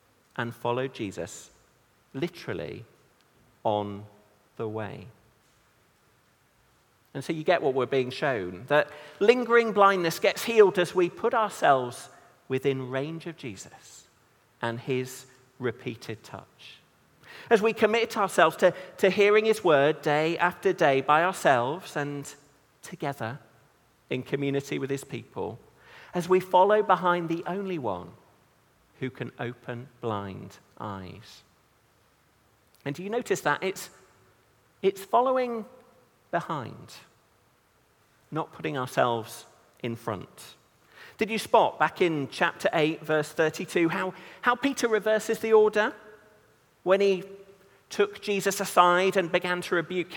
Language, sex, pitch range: English, male, 125-195 Hz